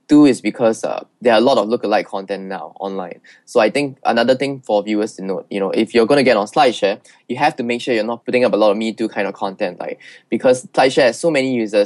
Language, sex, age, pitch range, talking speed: English, male, 20-39, 105-125 Hz, 265 wpm